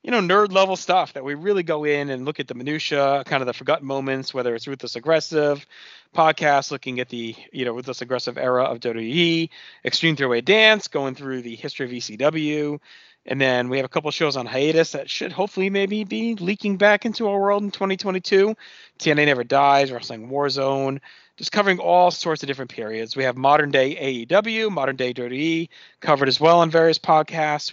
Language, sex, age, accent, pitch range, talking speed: English, male, 40-59, American, 130-165 Hz, 195 wpm